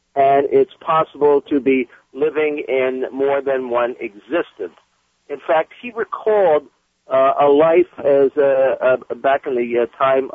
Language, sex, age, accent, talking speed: English, male, 50-69, American, 150 wpm